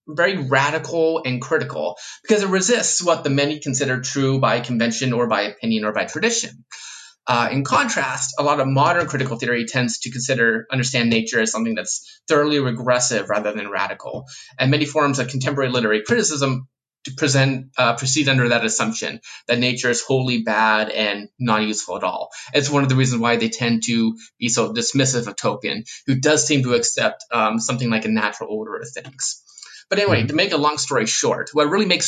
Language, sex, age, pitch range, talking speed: English, male, 20-39, 120-165 Hz, 195 wpm